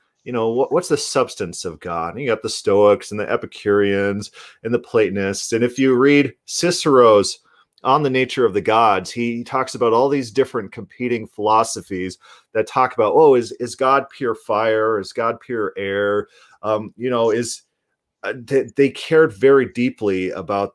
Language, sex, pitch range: English, male, 105-140 Hz